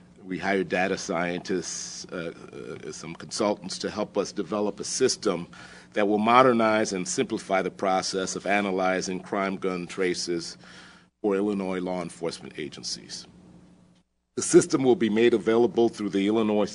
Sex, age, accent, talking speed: male, 40-59, American, 145 wpm